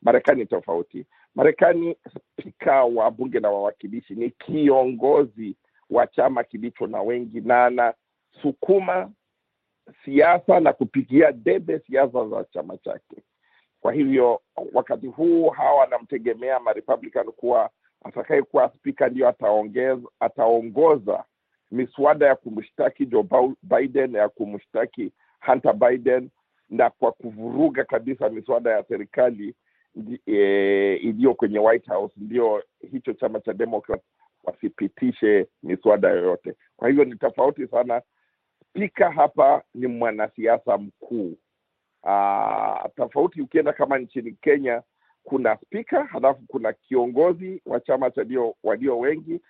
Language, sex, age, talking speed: Swahili, male, 50-69, 115 wpm